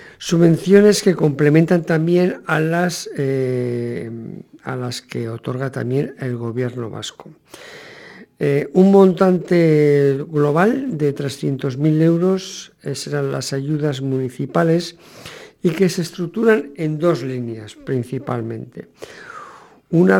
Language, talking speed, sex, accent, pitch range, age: English, 100 wpm, male, Spanish, 130-165 Hz, 50-69